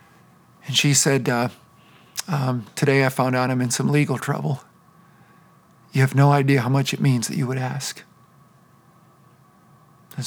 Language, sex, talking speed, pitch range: English, male, 160 wpm, 135-170 Hz